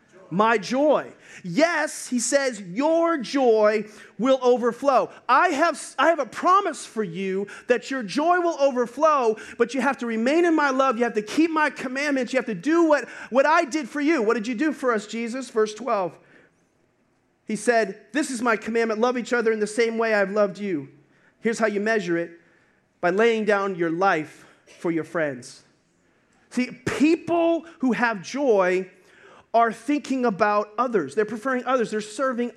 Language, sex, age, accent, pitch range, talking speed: English, male, 30-49, American, 205-255 Hz, 180 wpm